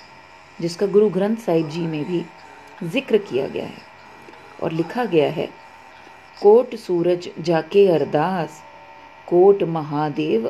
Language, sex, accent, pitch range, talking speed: English, female, Indian, 150-205 Hz, 120 wpm